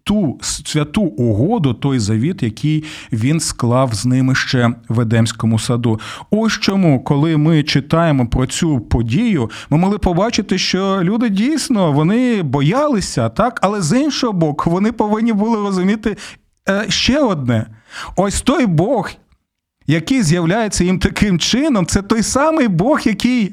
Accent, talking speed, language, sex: native, 140 wpm, Ukrainian, male